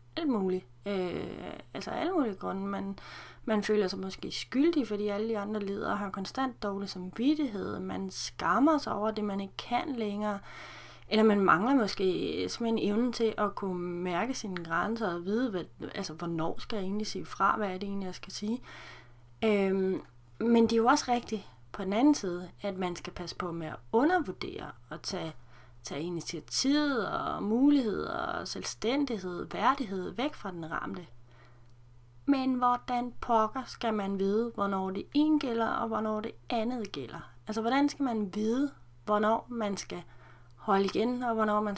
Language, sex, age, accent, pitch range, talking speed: Danish, female, 30-49, native, 180-230 Hz, 170 wpm